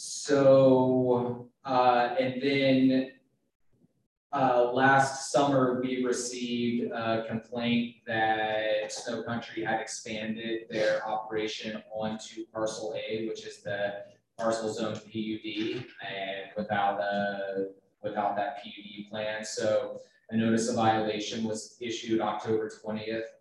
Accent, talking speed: American, 110 wpm